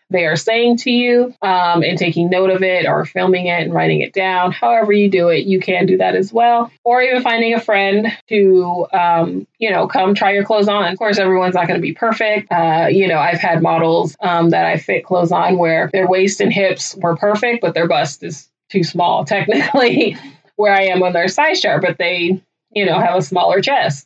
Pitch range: 170-200 Hz